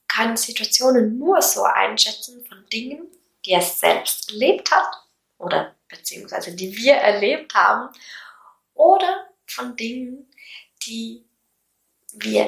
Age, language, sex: 20-39, German, female